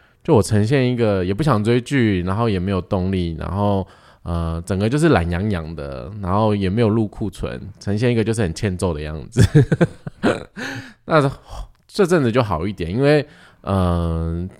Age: 20-39